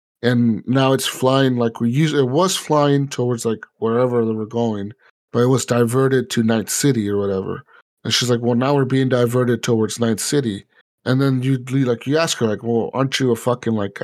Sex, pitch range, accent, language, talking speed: male, 110-135 Hz, American, English, 220 wpm